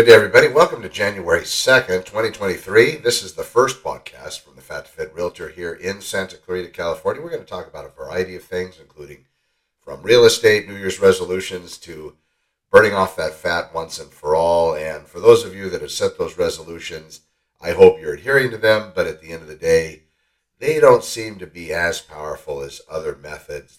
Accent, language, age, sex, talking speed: American, English, 50-69, male, 205 wpm